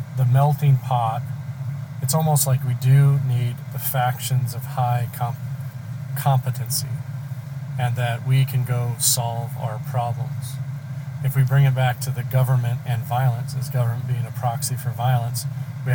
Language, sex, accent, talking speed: English, male, American, 155 wpm